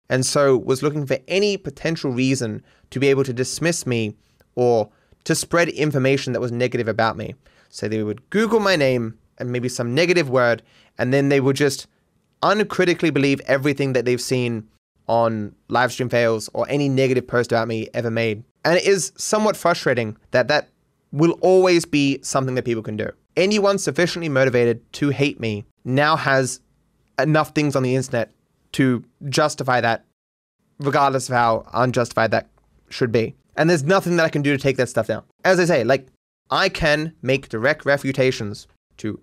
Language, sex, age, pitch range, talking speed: English, male, 20-39, 120-150 Hz, 175 wpm